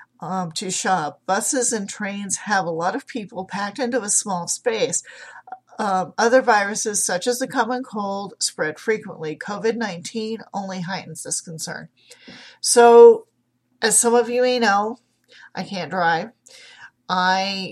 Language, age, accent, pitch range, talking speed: English, 40-59, American, 175-220 Hz, 140 wpm